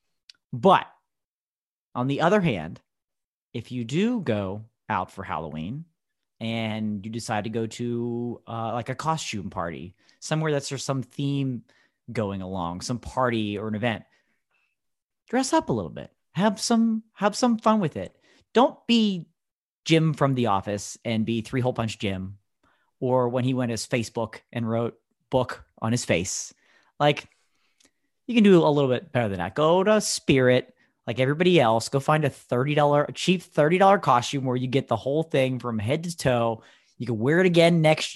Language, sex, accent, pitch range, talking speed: English, male, American, 115-155 Hz, 175 wpm